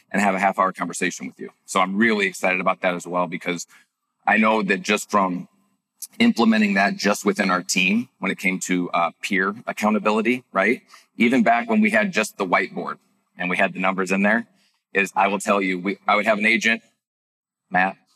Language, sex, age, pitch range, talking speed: English, male, 30-49, 100-135 Hz, 210 wpm